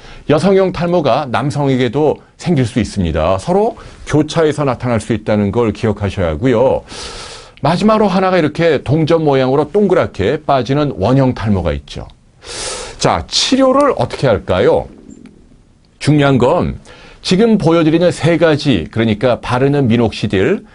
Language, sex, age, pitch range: Korean, male, 40-59, 110-155 Hz